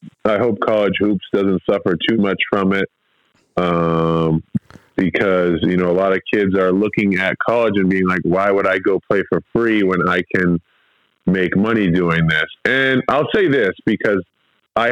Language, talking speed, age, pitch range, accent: English, 180 wpm, 20-39, 95-115 Hz, American